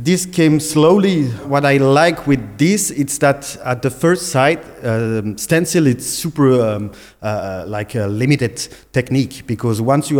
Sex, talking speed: male, 160 wpm